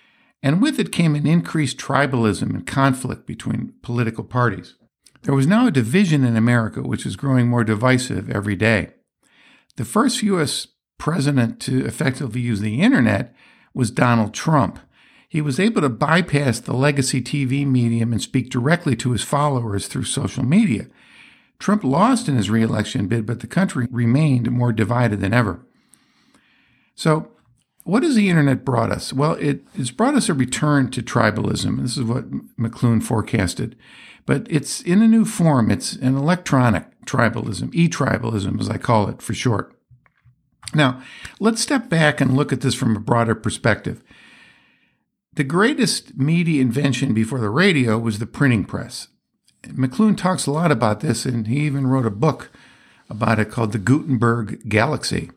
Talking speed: 160 wpm